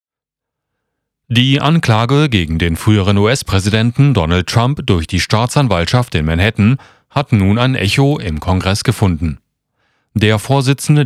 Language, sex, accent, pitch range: German, male, German, 95-130 Hz